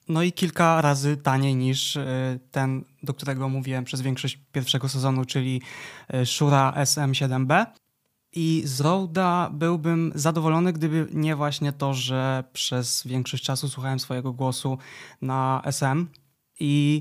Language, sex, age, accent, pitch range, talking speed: Polish, male, 20-39, native, 130-155 Hz, 125 wpm